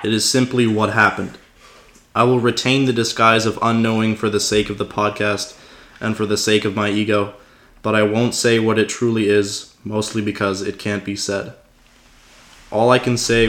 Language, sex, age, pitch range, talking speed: English, male, 20-39, 105-120 Hz, 190 wpm